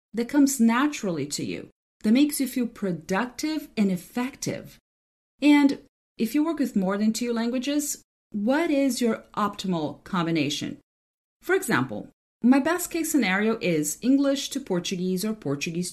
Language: English